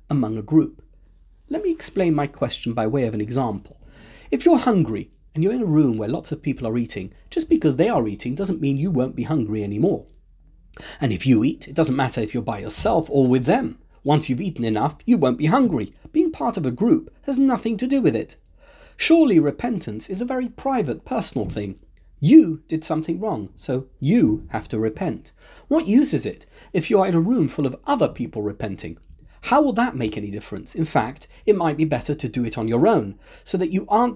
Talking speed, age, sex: 220 wpm, 40-59, male